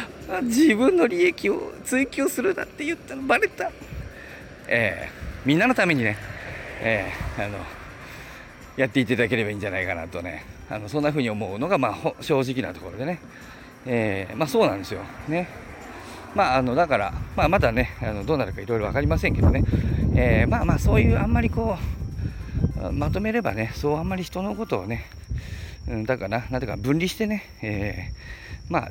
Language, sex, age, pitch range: Japanese, male, 40-59, 100-145 Hz